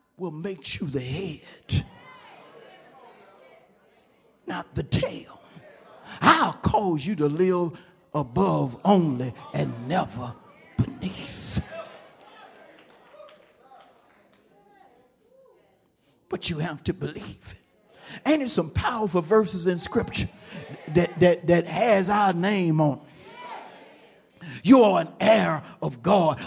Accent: American